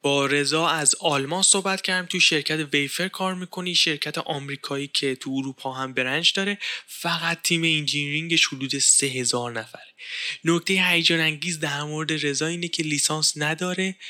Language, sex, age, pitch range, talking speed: Persian, male, 10-29, 145-185 Hz, 155 wpm